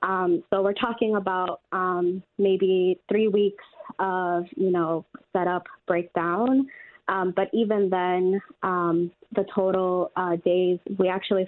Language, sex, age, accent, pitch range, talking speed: English, female, 20-39, American, 175-195 Hz, 130 wpm